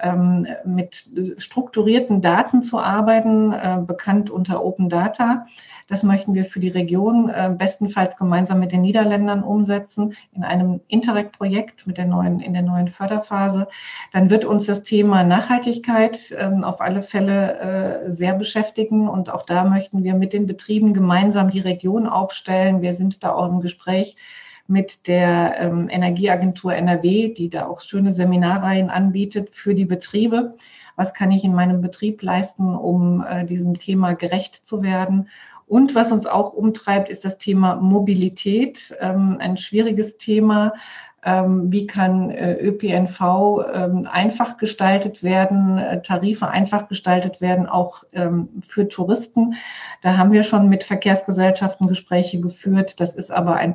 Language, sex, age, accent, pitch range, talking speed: German, female, 50-69, German, 180-205 Hz, 135 wpm